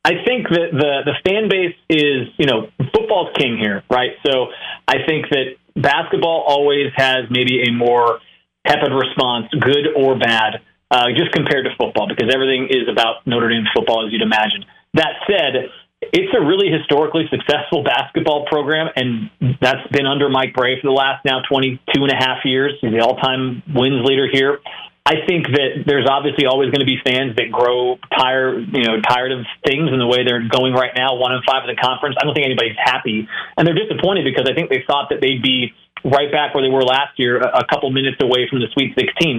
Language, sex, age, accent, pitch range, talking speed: English, male, 30-49, American, 125-145 Hz, 200 wpm